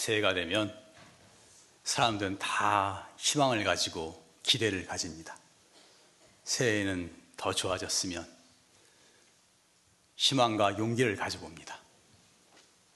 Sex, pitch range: male, 105-145 Hz